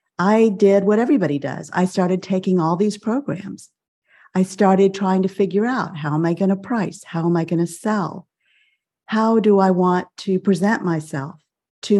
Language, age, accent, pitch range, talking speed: English, 50-69, American, 155-200 Hz, 185 wpm